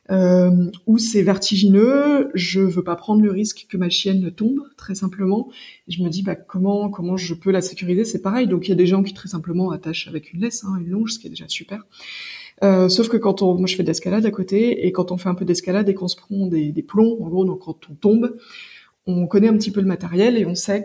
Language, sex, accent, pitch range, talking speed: French, female, French, 175-210 Hz, 260 wpm